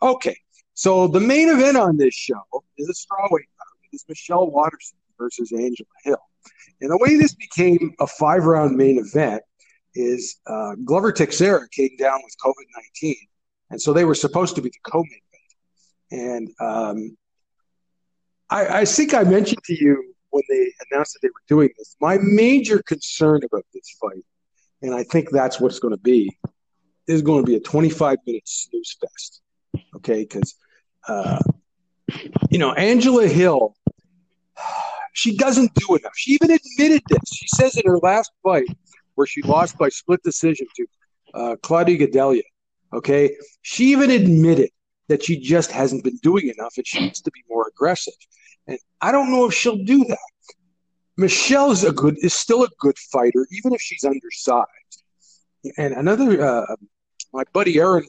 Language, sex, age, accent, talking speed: English, male, 50-69, American, 170 wpm